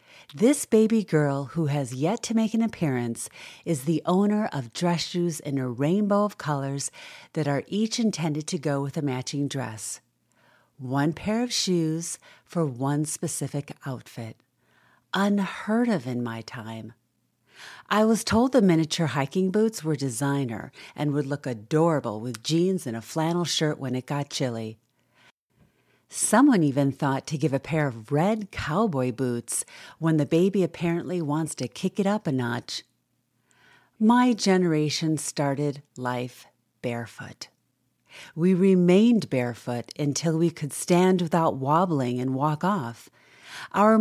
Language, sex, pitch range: English, female, 135-185 Hz